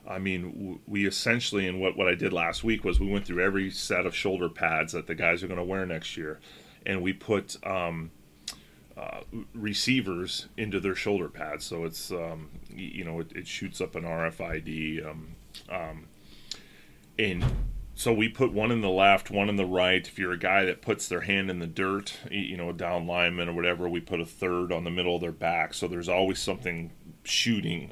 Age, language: 30-49, English